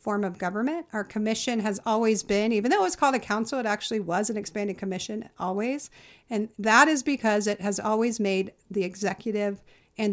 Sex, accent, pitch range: female, American, 195-235 Hz